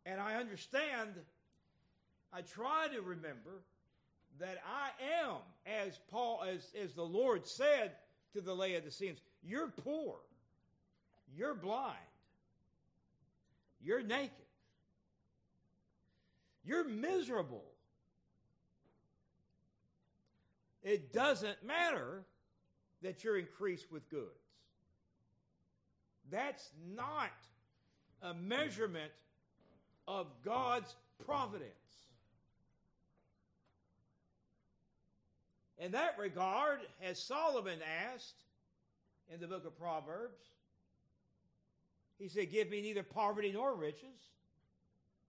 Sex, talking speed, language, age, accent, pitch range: male, 85 wpm, English, 60-79, American, 170-240 Hz